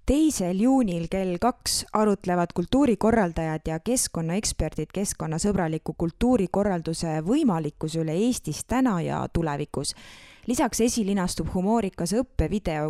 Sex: female